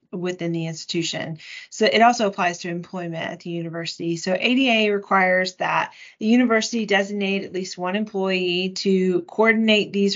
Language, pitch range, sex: English, 170-205 Hz, female